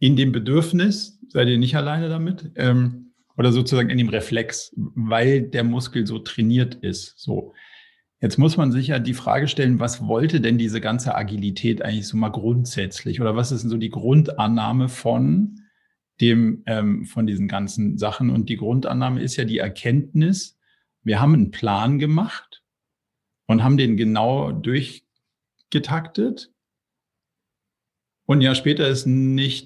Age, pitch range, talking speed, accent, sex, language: 50-69, 115-145 Hz, 150 wpm, German, male, German